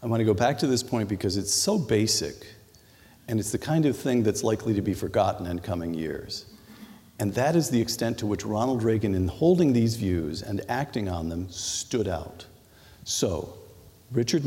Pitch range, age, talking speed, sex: 100-125 Hz, 50-69, 190 wpm, male